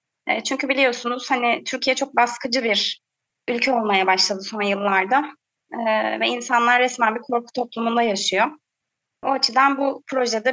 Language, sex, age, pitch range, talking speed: Turkish, female, 30-49, 220-275 Hz, 135 wpm